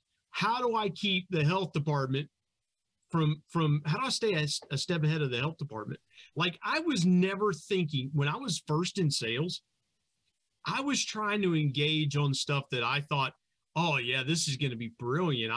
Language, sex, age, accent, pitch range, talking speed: English, male, 40-59, American, 130-175 Hz, 200 wpm